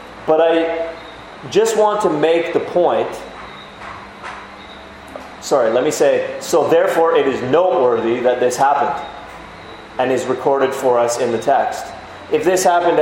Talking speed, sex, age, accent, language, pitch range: 145 wpm, male, 30-49, American, English, 120-165 Hz